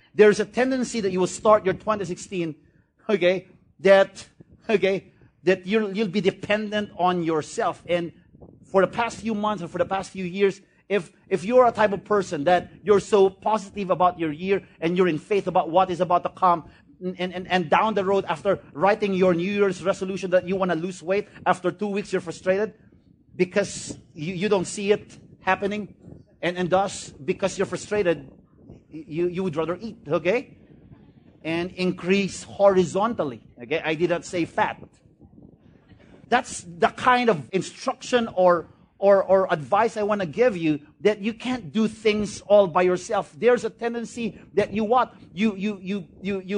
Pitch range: 180-210 Hz